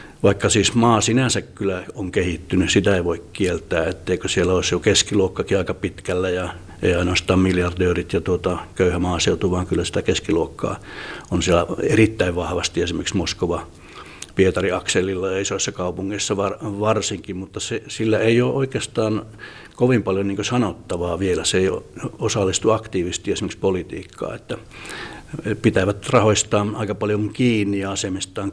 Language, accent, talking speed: Finnish, native, 145 wpm